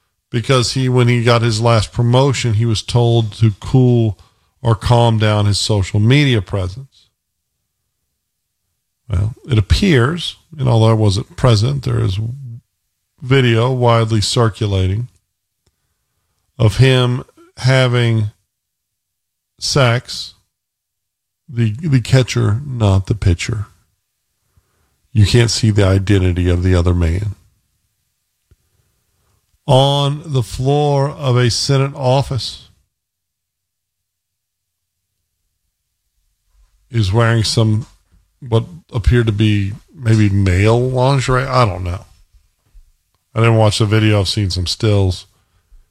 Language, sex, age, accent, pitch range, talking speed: English, male, 50-69, American, 95-125 Hz, 105 wpm